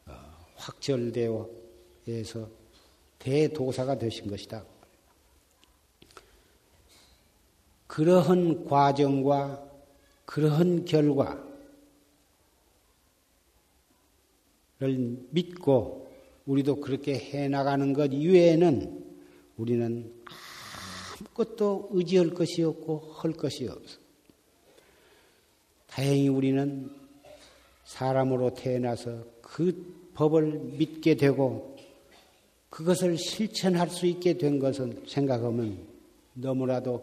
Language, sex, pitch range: Korean, male, 115-165 Hz